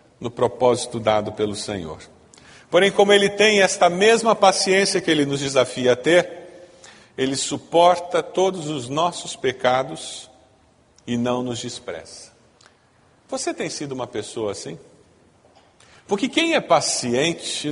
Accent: Brazilian